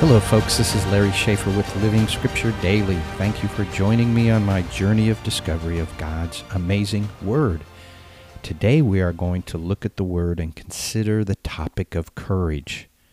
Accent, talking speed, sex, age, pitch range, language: American, 180 wpm, male, 40-59, 85-115 Hz, English